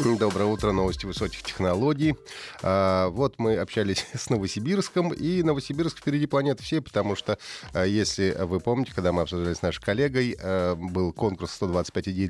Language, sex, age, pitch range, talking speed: Russian, male, 30-49, 95-150 Hz, 145 wpm